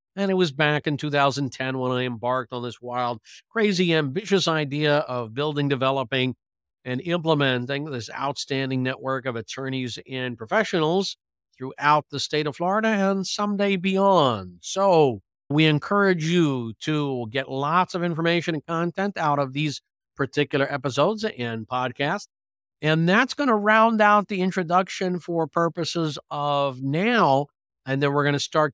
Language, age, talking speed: English, 50-69, 150 wpm